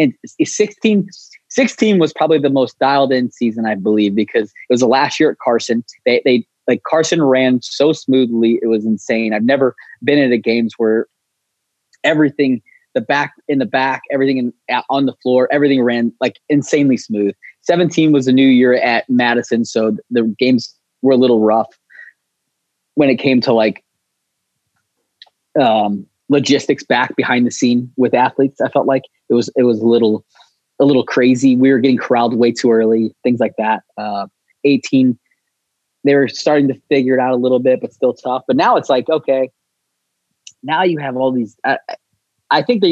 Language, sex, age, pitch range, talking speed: English, male, 20-39, 120-145 Hz, 185 wpm